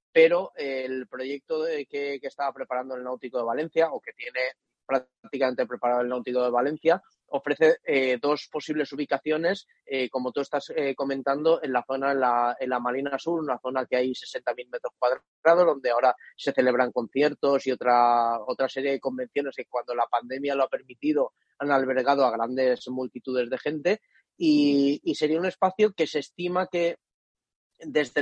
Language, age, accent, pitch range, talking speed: Spanish, 20-39, Spanish, 130-155 Hz, 180 wpm